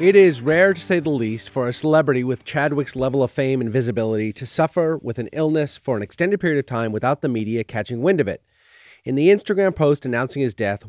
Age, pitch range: 30-49, 110-145 Hz